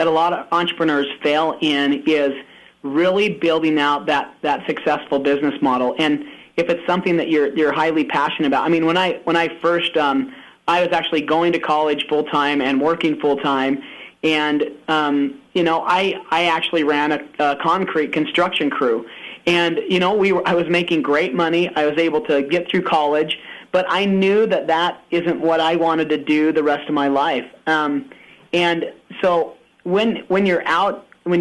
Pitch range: 150-170 Hz